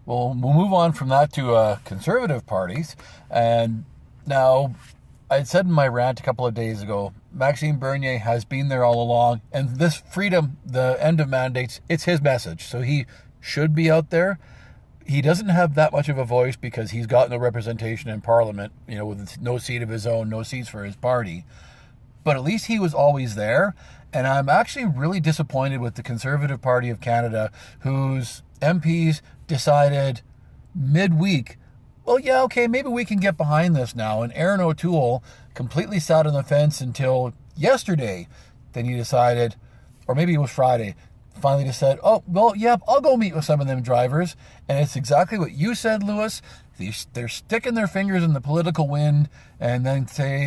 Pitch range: 120-165 Hz